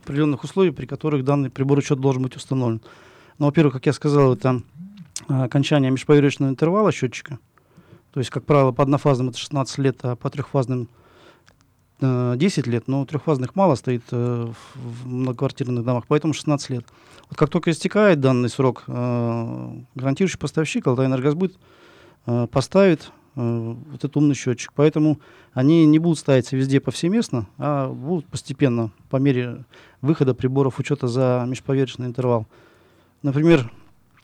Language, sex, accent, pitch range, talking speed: Russian, male, native, 125-150 Hz, 145 wpm